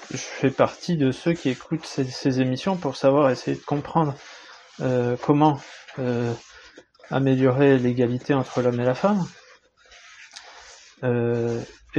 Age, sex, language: 20-39, male, French